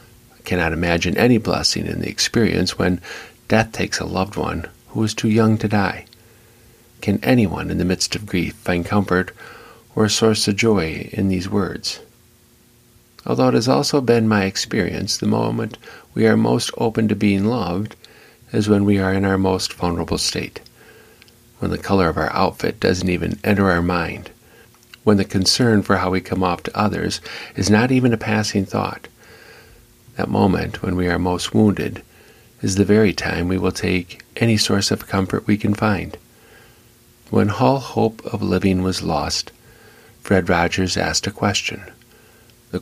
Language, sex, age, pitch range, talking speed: English, male, 50-69, 95-110 Hz, 170 wpm